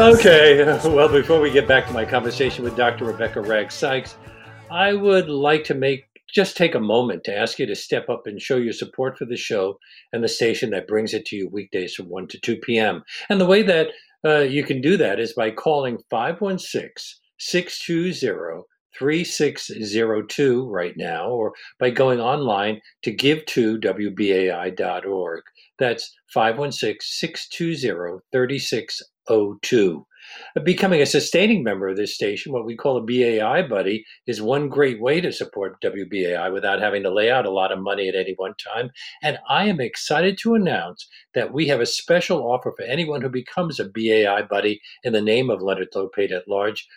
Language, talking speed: English, 175 wpm